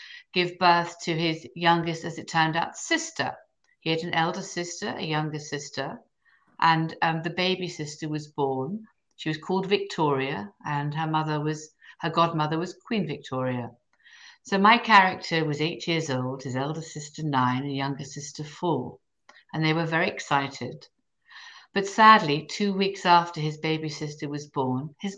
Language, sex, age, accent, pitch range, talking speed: English, female, 60-79, British, 150-190 Hz, 165 wpm